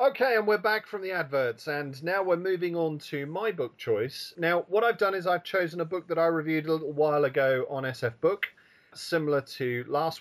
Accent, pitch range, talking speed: British, 130-180 Hz, 225 wpm